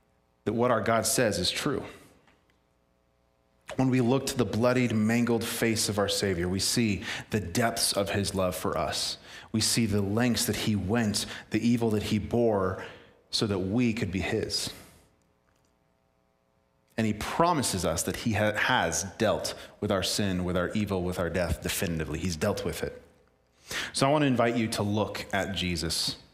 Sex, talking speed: male, 175 wpm